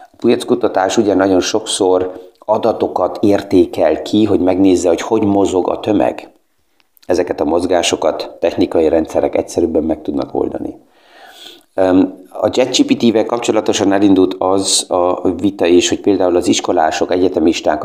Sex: male